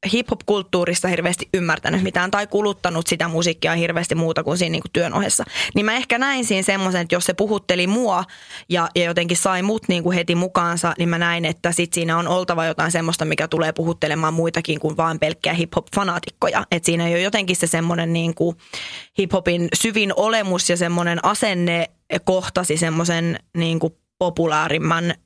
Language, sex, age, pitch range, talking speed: English, female, 20-39, 165-185 Hz, 160 wpm